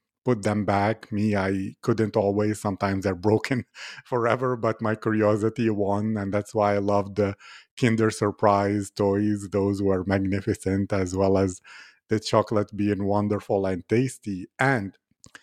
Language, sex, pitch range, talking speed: English, male, 105-125 Hz, 145 wpm